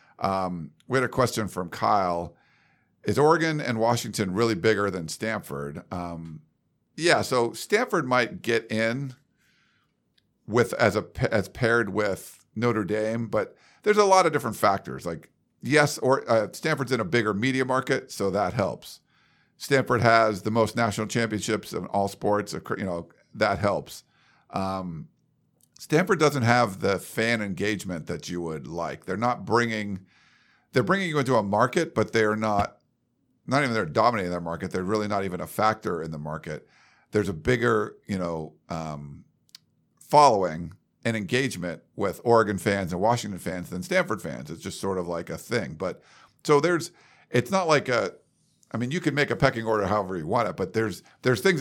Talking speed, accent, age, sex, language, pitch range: 175 wpm, American, 50-69, male, English, 95-120 Hz